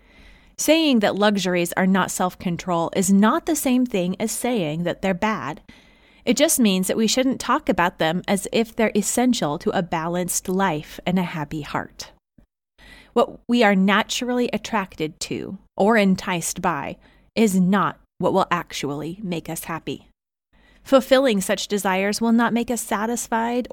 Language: English